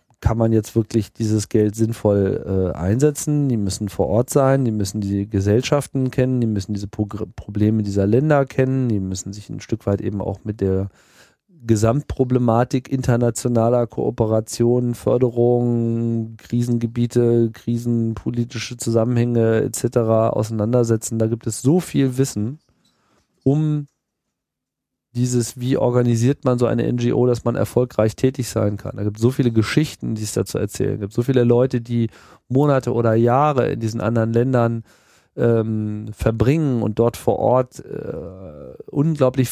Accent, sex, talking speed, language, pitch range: German, male, 150 wpm, German, 110-135 Hz